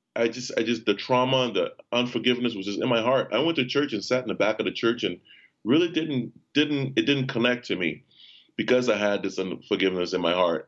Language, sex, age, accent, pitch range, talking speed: English, male, 30-49, American, 95-125 Hz, 240 wpm